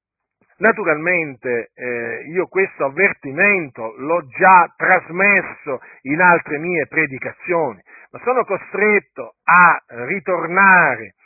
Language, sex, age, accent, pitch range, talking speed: Italian, male, 50-69, native, 140-200 Hz, 90 wpm